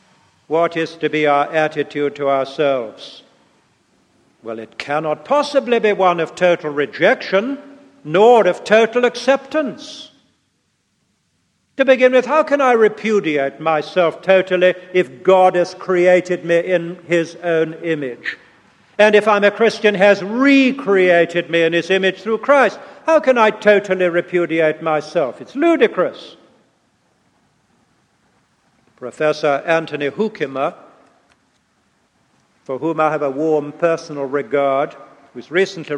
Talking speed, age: 120 wpm, 60-79